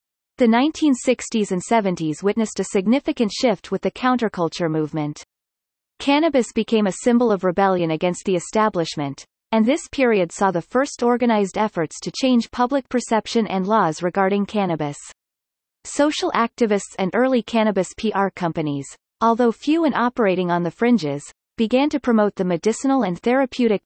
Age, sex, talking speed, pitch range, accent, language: 30-49, female, 145 wpm, 180-245 Hz, American, English